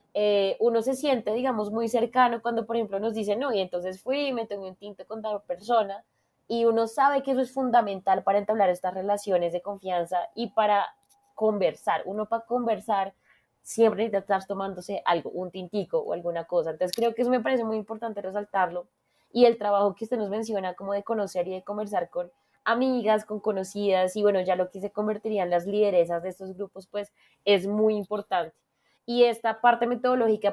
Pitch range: 200-240 Hz